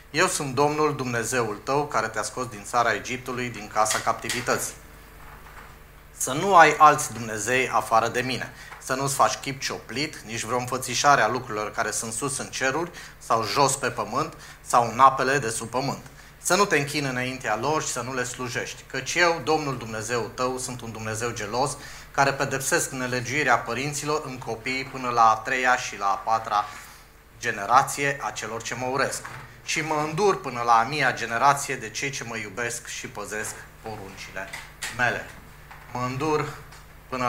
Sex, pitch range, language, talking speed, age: male, 110-135 Hz, Romanian, 170 wpm, 30-49